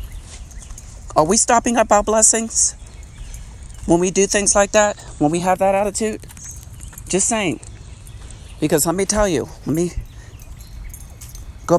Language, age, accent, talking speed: English, 50-69, American, 135 wpm